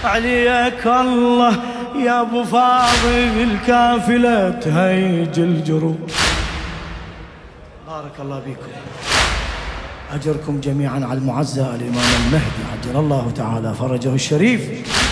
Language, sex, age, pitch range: Arabic, male, 30-49, 190-245 Hz